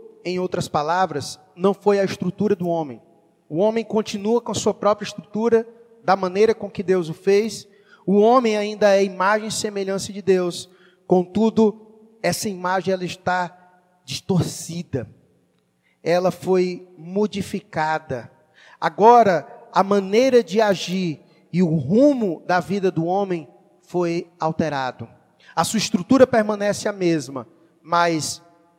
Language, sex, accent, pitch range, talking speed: Portuguese, male, Brazilian, 165-205 Hz, 130 wpm